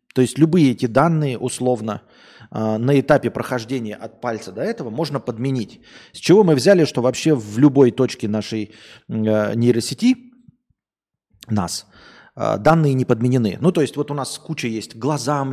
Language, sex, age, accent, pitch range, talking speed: Russian, male, 30-49, native, 115-155 Hz, 165 wpm